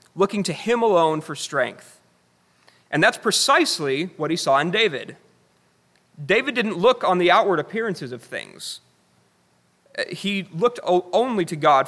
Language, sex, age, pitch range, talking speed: English, male, 30-49, 135-200 Hz, 140 wpm